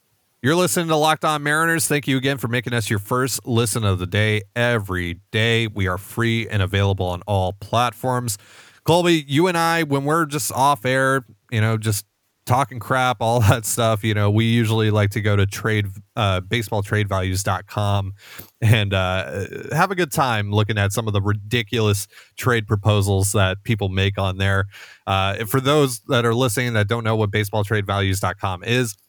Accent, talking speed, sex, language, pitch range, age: American, 180 wpm, male, English, 100-120 Hz, 30-49